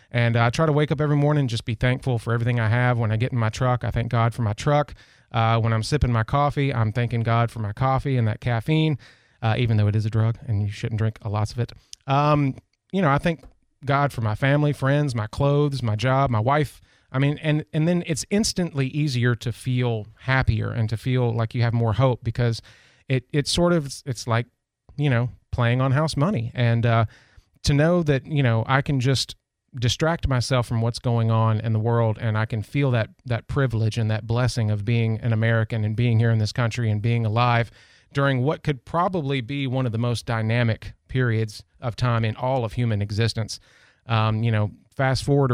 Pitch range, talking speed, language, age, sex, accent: 110-135 Hz, 225 wpm, English, 30-49, male, American